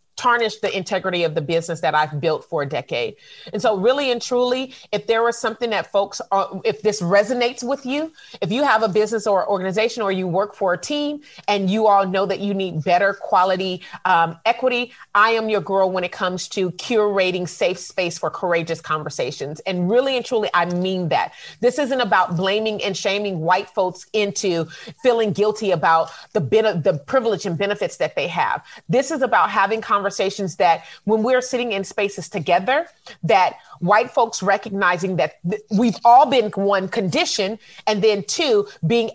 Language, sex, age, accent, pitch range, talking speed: English, female, 30-49, American, 185-230 Hz, 190 wpm